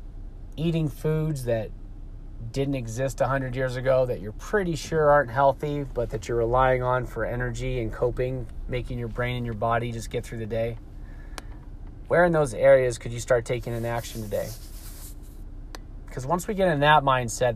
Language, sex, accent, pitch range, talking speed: English, male, American, 115-140 Hz, 180 wpm